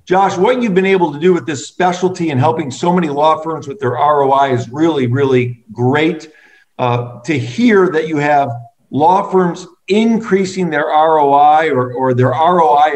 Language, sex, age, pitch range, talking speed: English, male, 50-69, 140-180 Hz, 175 wpm